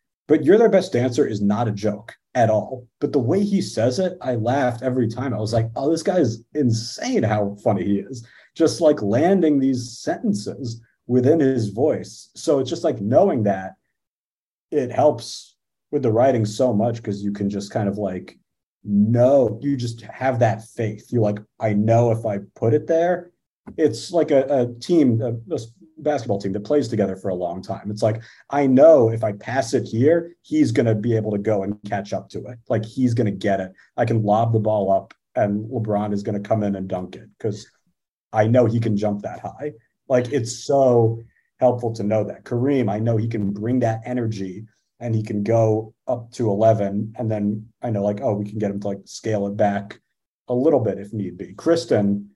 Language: English